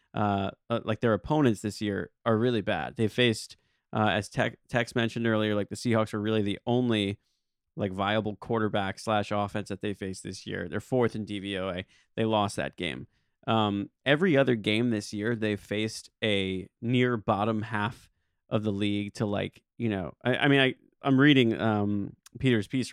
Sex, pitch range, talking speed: male, 105-125 Hz, 185 wpm